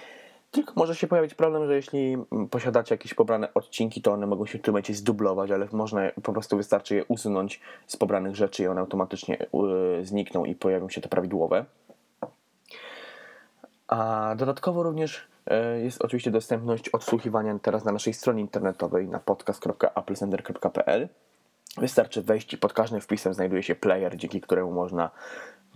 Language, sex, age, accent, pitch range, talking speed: Polish, male, 20-39, native, 95-125 Hz, 150 wpm